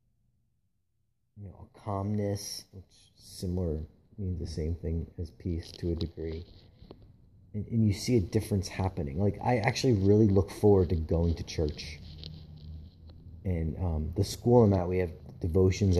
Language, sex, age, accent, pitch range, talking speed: English, male, 30-49, American, 80-105 Hz, 155 wpm